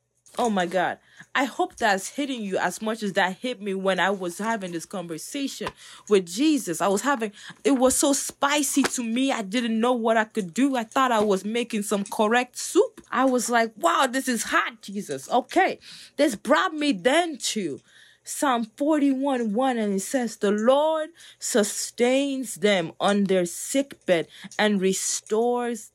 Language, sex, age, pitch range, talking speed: English, female, 20-39, 200-275 Hz, 175 wpm